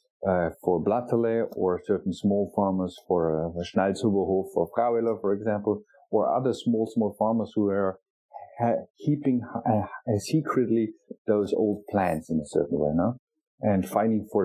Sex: male